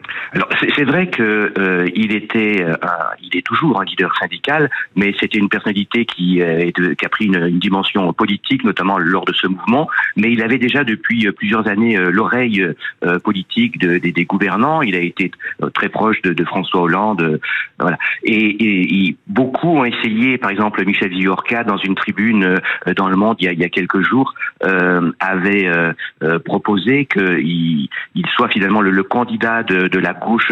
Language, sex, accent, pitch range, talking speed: French, male, French, 95-110 Hz, 195 wpm